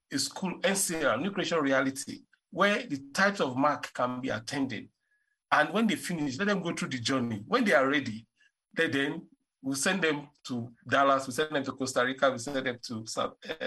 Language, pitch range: English, 150-235 Hz